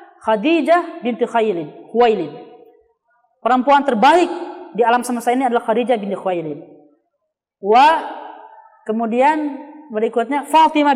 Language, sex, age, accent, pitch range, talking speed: Indonesian, female, 20-39, native, 225-300 Hz, 90 wpm